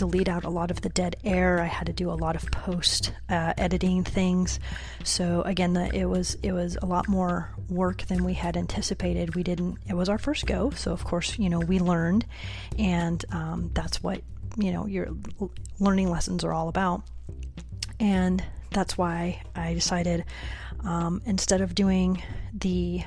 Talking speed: 180 wpm